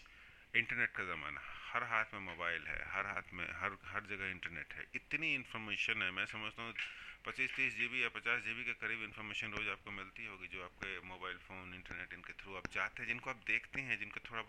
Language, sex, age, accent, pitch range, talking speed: English, male, 30-49, Indian, 95-125 Hz, 210 wpm